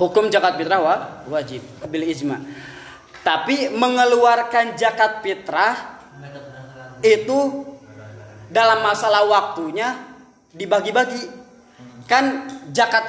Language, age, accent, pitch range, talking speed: Indonesian, 20-39, native, 180-240 Hz, 80 wpm